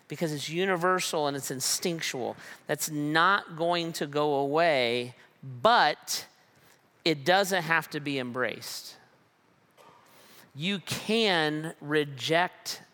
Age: 40-59